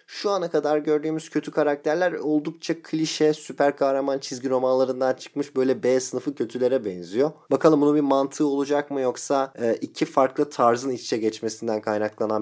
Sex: male